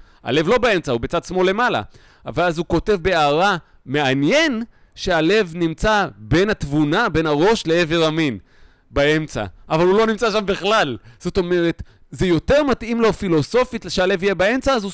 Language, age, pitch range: Hebrew, 30-49, 135-180 Hz